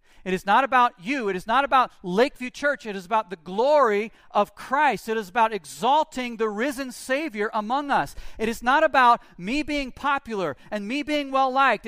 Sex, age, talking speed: male, 40-59, 190 wpm